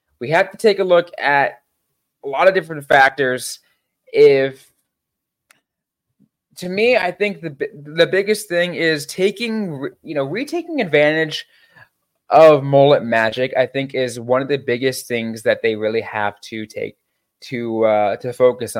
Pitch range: 130-190 Hz